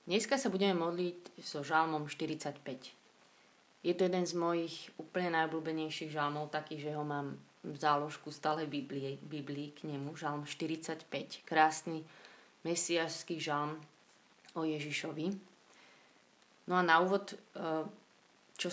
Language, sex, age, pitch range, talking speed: Slovak, female, 20-39, 150-170 Hz, 120 wpm